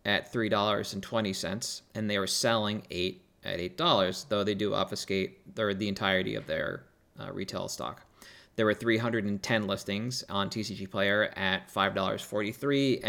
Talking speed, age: 135 wpm, 30-49